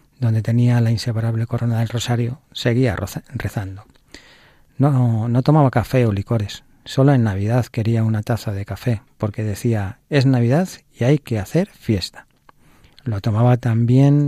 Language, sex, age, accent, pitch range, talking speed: Spanish, male, 40-59, Spanish, 110-130 Hz, 145 wpm